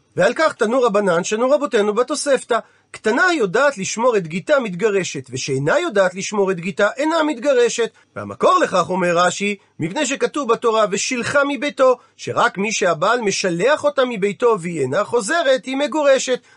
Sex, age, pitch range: male, 40-59, 195-280 Hz